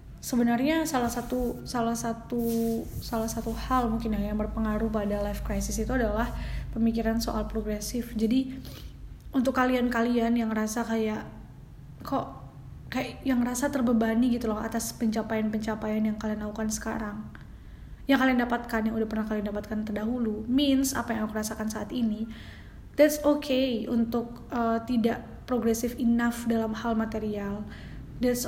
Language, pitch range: Indonesian, 220-255 Hz